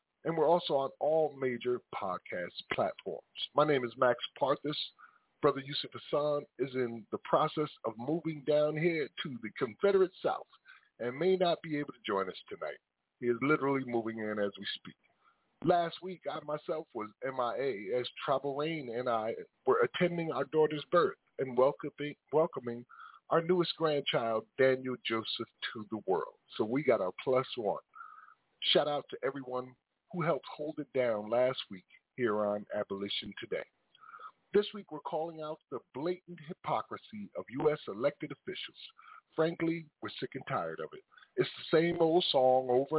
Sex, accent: male, American